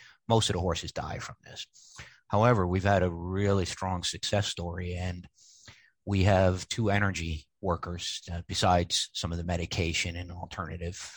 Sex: male